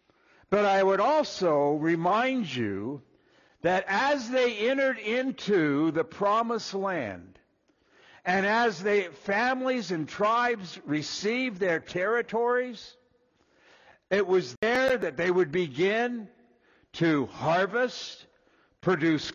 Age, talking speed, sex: 60-79, 100 wpm, male